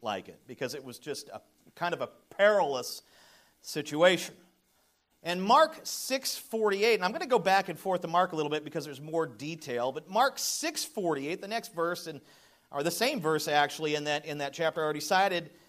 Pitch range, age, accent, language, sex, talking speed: 155-220 Hz, 40-59, American, English, male, 200 wpm